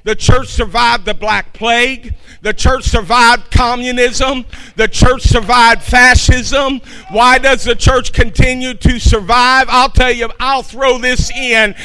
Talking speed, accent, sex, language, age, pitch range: 140 wpm, American, male, English, 50-69, 235-275 Hz